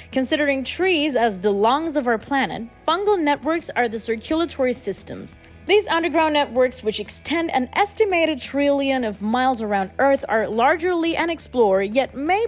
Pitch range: 225-305 Hz